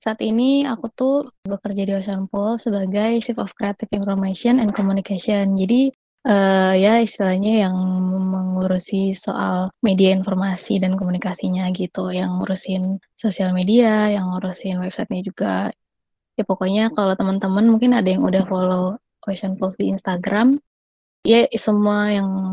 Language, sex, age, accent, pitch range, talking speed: Indonesian, female, 20-39, native, 190-230 Hz, 130 wpm